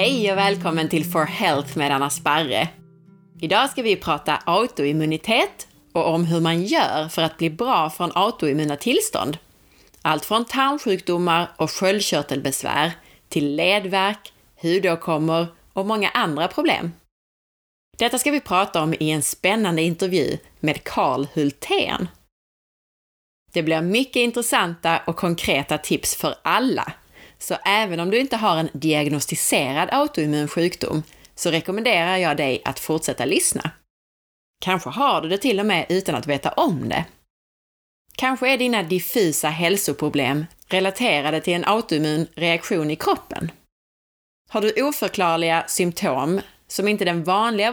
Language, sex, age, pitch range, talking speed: Swedish, female, 30-49, 155-205 Hz, 135 wpm